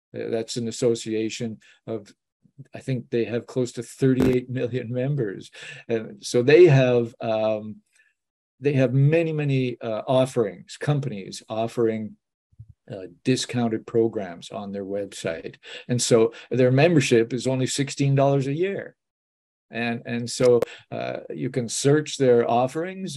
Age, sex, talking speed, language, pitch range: 50-69, male, 130 wpm, English, 115-135 Hz